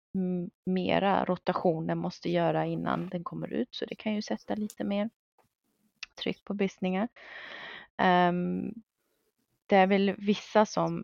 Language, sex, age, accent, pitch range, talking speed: Swedish, female, 30-49, native, 170-205 Hz, 130 wpm